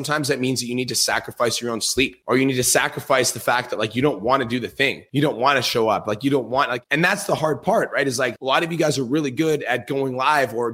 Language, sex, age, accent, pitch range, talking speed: English, male, 30-49, American, 120-145 Hz, 325 wpm